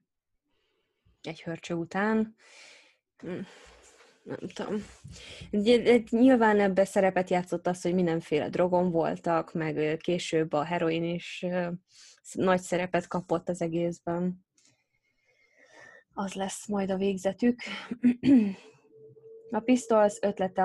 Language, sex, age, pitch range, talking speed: Hungarian, female, 20-39, 175-205 Hz, 95 wpm